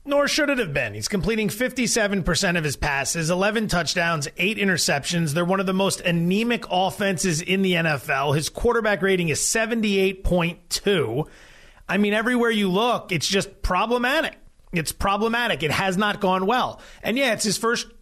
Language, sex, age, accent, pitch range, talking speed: English, male, 30-49, American, 170-225 Hz, 165 wpm